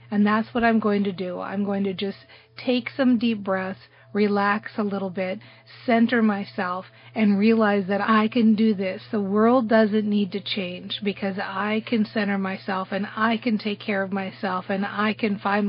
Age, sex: 40-59, female